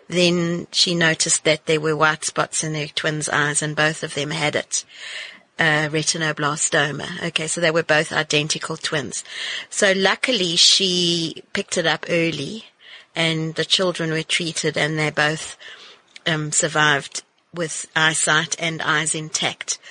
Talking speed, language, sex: 150 wpm, English, female